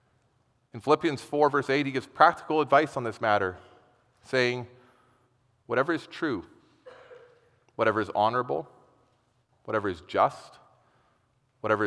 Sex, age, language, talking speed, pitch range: male, 40-59, English, 115 wpm, 120-140 Hz